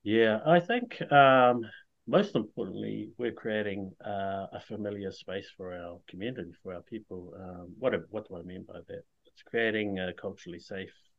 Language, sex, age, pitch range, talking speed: English, male, 30-49, 95-110 Hz, 165 wpm